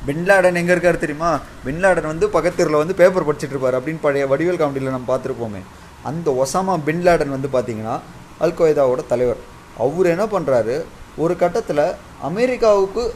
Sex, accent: male, native